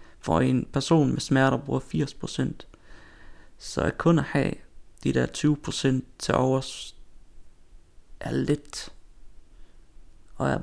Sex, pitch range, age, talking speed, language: male, 100-140 Hz, 30-49, 120 wpm, Danish